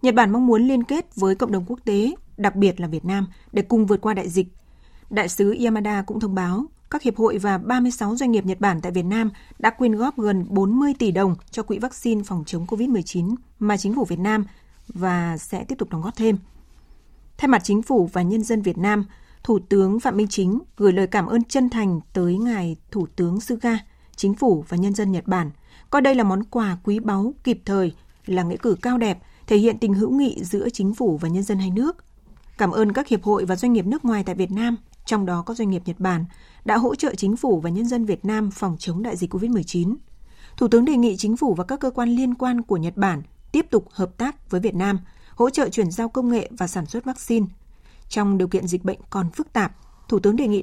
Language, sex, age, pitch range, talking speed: Vietnamese, female, 20-39, 190-235 Hz, 240 wpm